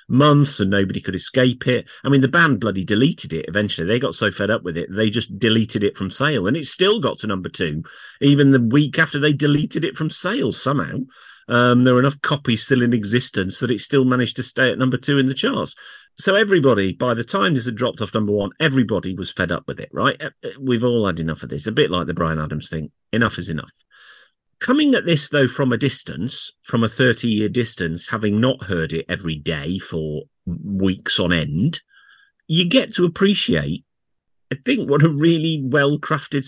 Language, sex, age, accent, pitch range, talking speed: English, male, 40-59, British, 105-145 Hz, 210 wpm